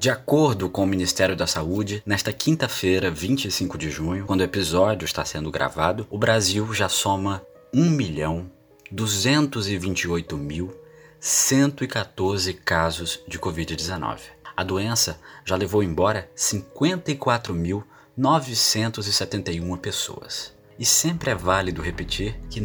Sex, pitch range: male, 95-125 Hz